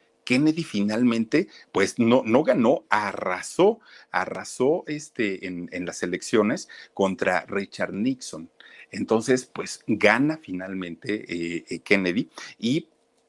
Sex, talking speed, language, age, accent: male, 110 wpm, Spanish, 50-69, Mexican